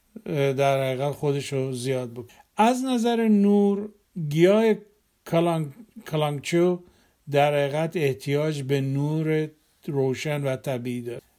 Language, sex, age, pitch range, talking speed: Persian, male, 50-69, 145-190 Hz, 105 wpm